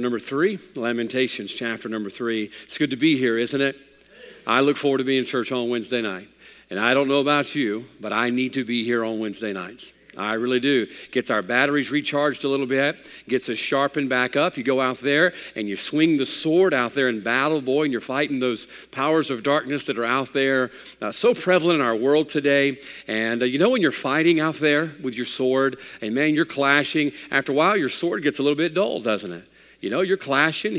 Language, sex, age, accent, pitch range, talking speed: English, male, 50-69, American, 120-145 Hz, 230 wpm